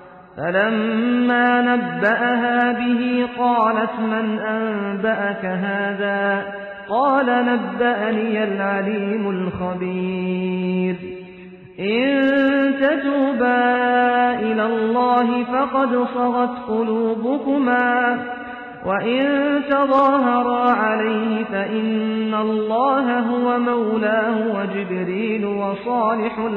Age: 40-59